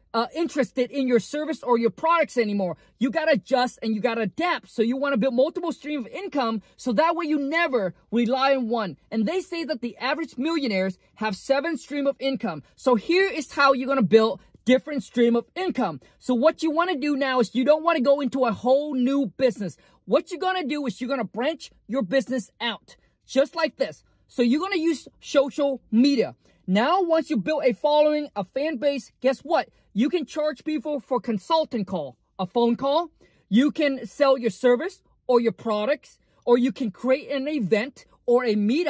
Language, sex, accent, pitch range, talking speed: English, male, American, 235-305 Hz, 205 wpm